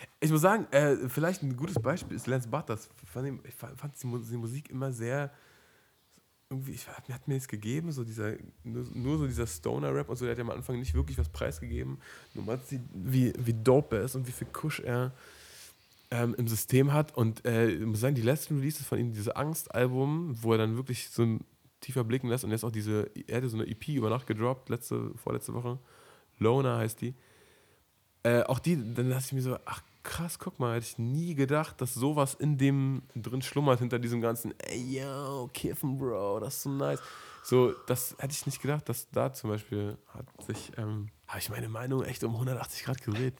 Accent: German